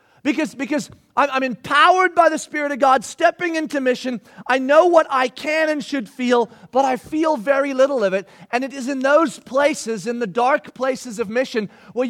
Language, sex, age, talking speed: English, male, 40-59, 200 wpm